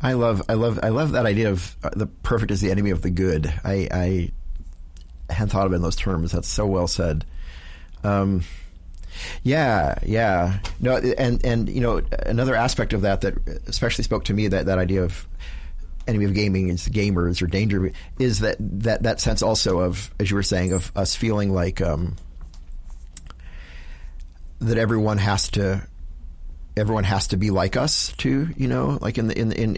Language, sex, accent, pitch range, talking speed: English, male, American, 80-110 Hz, 185 wpm